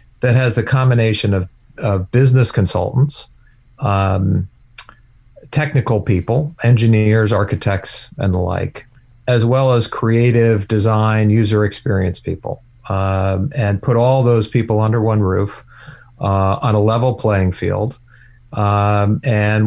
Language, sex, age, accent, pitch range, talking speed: English, male, 40-59, American, 100-120 Hz, 125 wpm